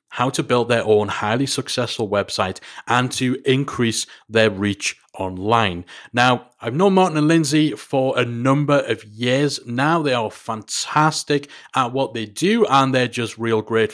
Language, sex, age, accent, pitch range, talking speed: English, male, 30-49, British, 115-150 Hz, 165 wpm